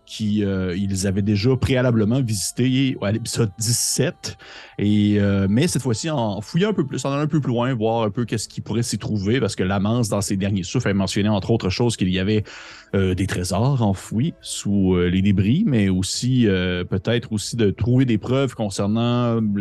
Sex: male